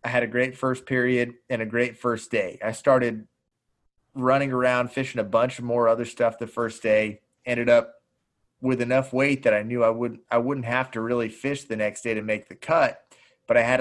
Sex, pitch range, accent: male, 110-130 Hz, American